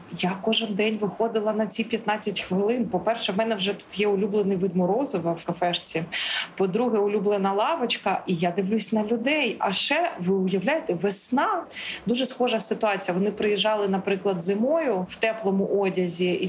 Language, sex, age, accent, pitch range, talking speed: Ukrainian, female, 30-49, native, 195-240 Hz, 155 wpm